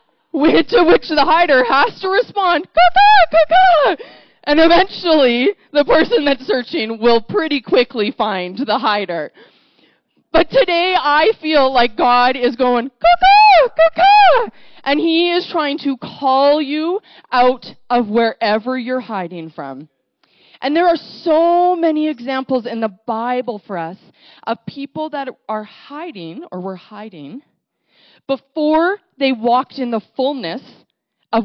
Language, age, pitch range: English, 20-39, 205-310 Hz